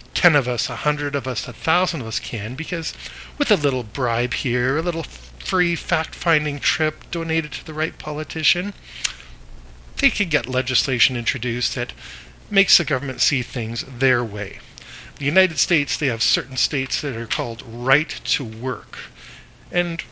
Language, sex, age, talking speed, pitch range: English, male, 40-59, 165 wpm, 115-160 Hz